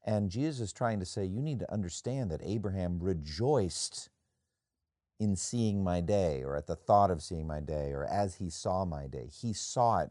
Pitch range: 90-115 Hz